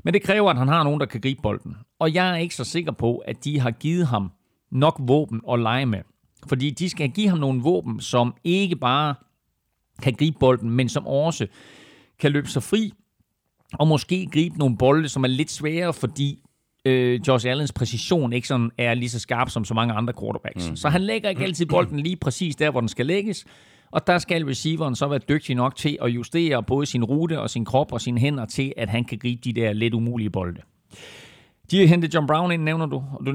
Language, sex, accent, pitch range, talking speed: Danish, male, native, 115-145 Hz, 225 wpm